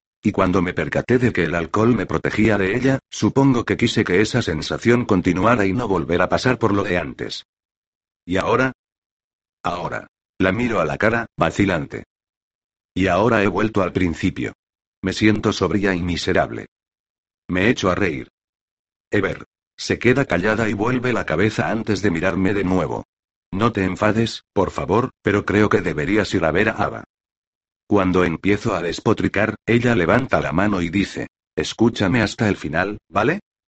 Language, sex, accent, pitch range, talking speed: Spanish, male, Spanish, 95-115 Hz, 165 wpm